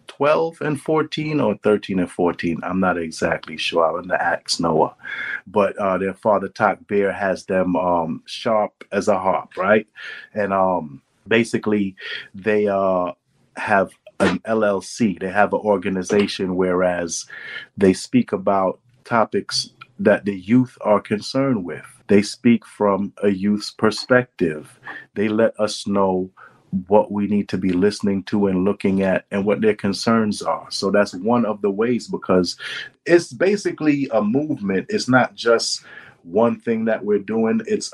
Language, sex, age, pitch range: English, male, 30-49, 95-115 Hz